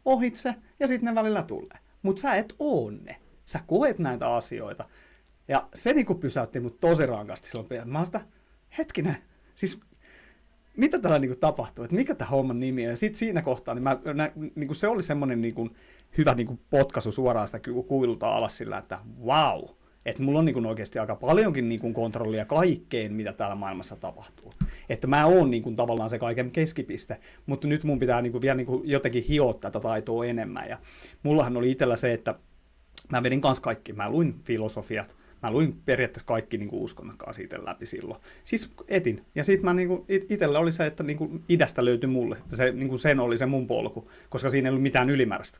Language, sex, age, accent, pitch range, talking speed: Finnish, male, 30-49, native, 120-185 Hz, 185 wpm